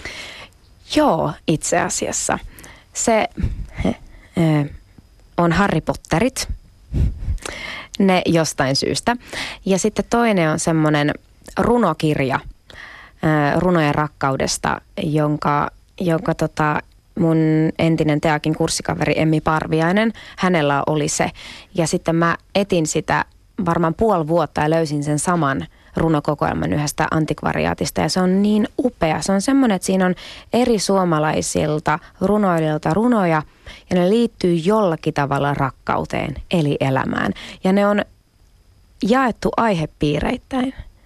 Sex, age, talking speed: female, 20-39, 105 wpm